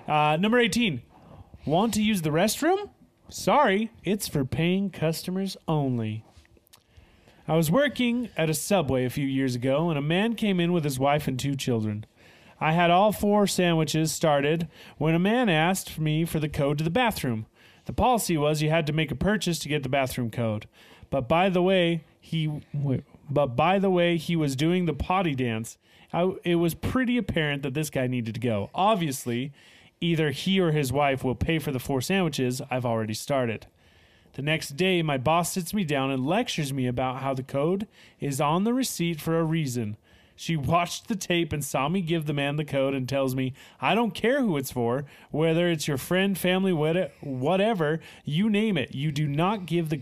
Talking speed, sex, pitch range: 200 wpm, male, 130-180 Hz